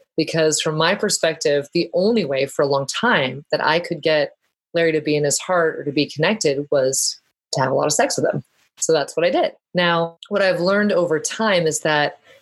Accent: American